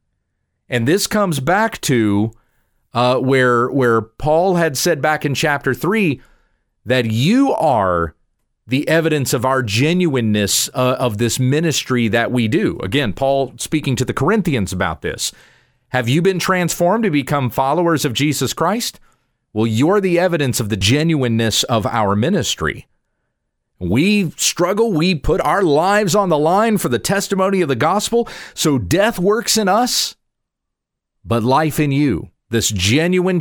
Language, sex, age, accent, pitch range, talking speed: English, male, 40-59, American, 115-165 Hz, 150 wpm